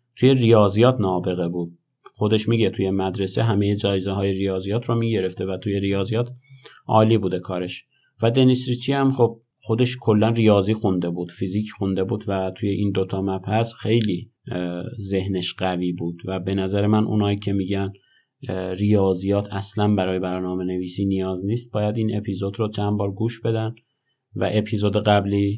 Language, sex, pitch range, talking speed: Persian, male, 95-115 Hz, 155 wpm